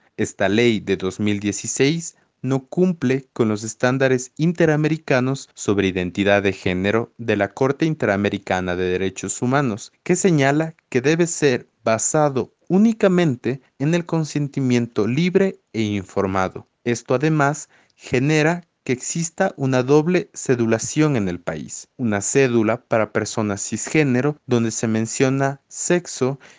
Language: Spanish